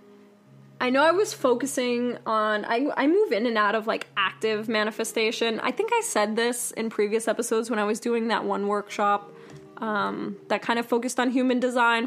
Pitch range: 210-275 Hz